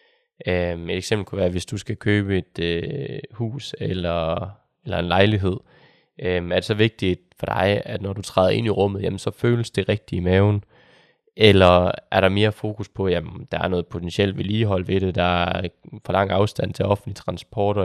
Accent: native